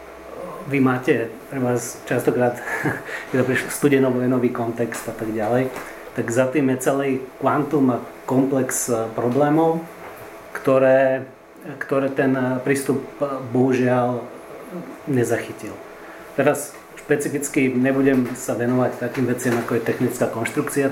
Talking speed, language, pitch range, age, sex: 110 wpm, Czech, 115-130 Hz, 30-49, male